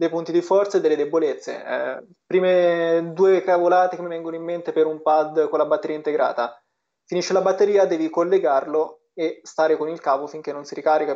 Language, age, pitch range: Italian, 20-39, 150-175 Hz